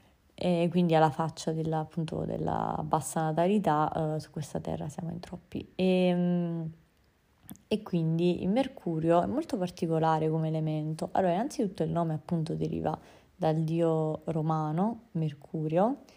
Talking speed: 135 wpm